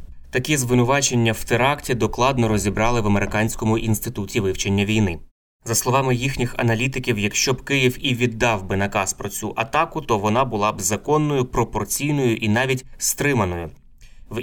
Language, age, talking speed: Ukrainian, 20-39, 145 wpm